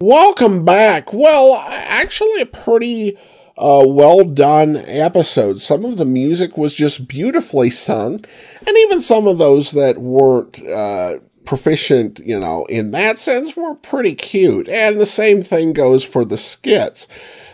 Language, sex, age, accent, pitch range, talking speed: English, male, 50-69, American, 130-210 Hz, 145 wpm